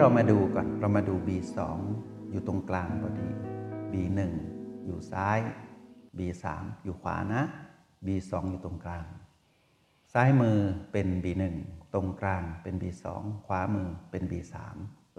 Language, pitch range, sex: Thai, 95-115 Hz, male